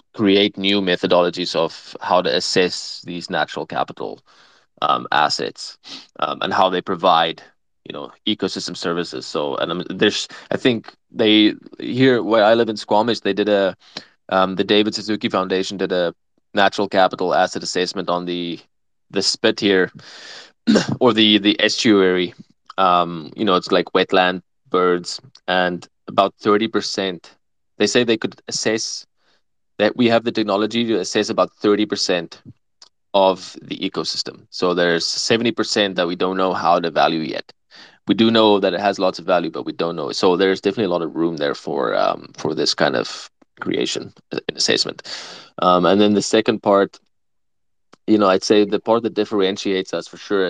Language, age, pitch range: English, 20-39, 90-105 Hz